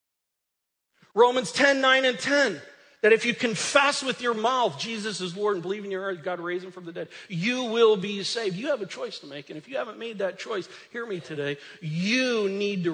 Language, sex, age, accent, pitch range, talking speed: English, male, 40-59, American, 185-245 Hz, 225 wpm